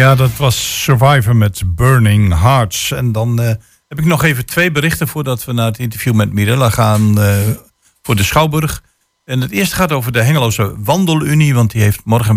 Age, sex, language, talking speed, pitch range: 50-69, male, Dutch, 195 wpm, 105-130 Hz